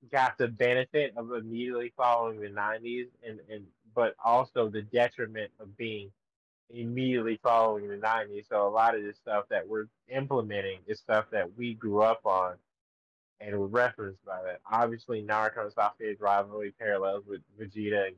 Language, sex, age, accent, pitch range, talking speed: English, male, 20-39, American, 100-115 Hz, 160 wpm